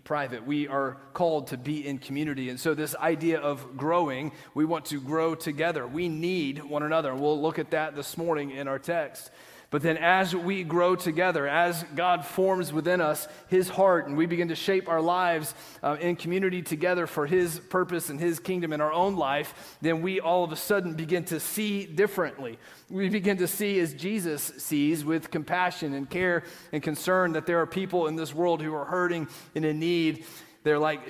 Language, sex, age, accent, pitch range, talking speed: English, male, 30-49, American, 155-180 Hz, 200 wpm